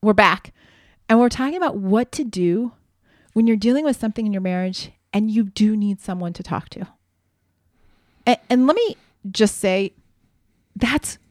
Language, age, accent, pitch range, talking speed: English, 30-49, American, 195-245 Hz, 170 wpm